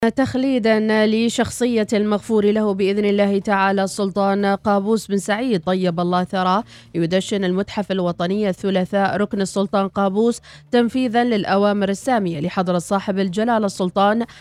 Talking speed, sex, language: 115 wpm, female, Arabic